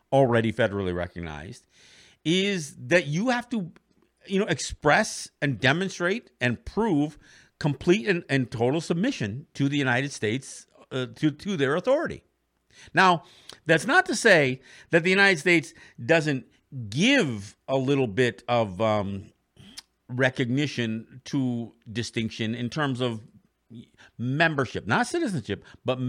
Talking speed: 125 wpm